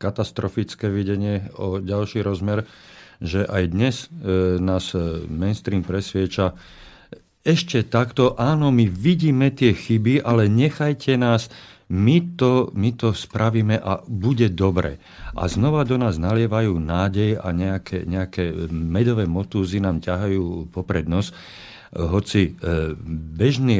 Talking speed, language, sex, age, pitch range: 115 wpm, Slovak, male, 50-69, 95-120 Hz